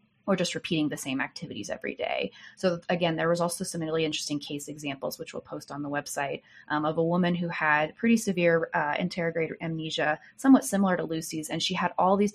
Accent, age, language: American, 20-39, English